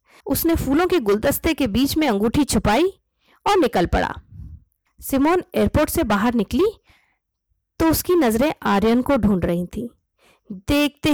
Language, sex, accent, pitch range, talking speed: Hindi, female, native, 210-280 Hz, 140 wpm